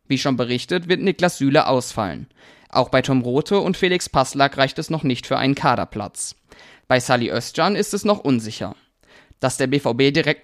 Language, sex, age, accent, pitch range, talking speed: German, male, 20-39, German, 130-165 Hz, 185 wpm